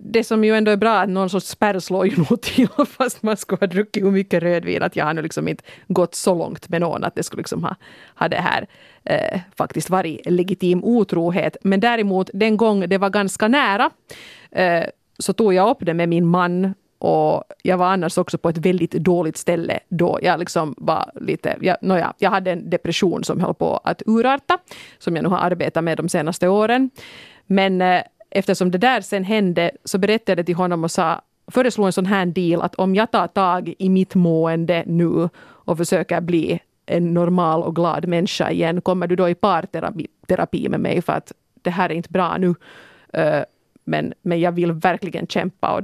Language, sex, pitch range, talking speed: Swedish, female, 175-210 Hz, 205 wpm